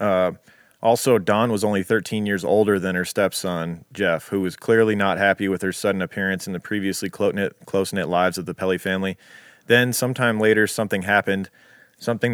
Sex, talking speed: male, 185 wpm